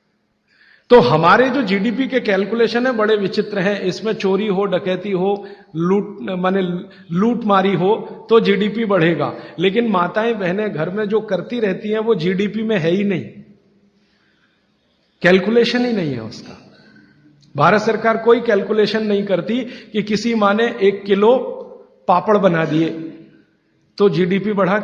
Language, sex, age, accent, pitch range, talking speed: Hindi, male, 50-69, native, 170-215 Hz, 150 wpm